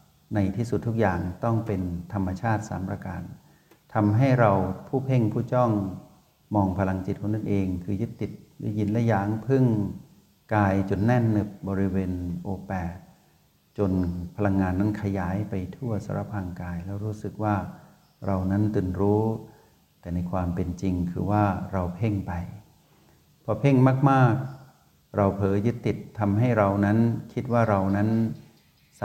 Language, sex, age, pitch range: Thai, male, 60-79, 95-110 Hz